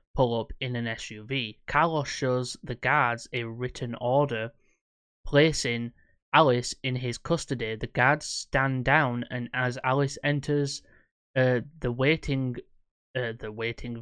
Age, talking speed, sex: 10-29, 135 wpm, male